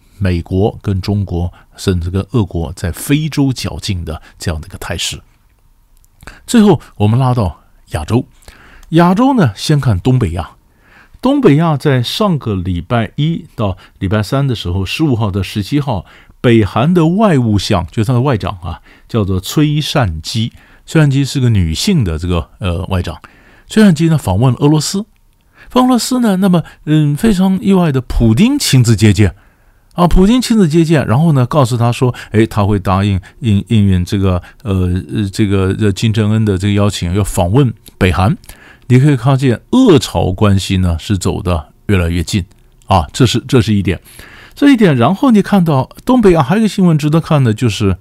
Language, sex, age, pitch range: Chinese, male, 50-69, 95-150 Hz